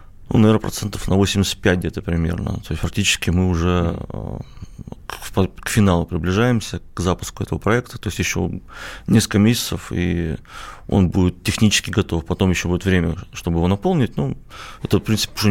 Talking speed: 160 wpm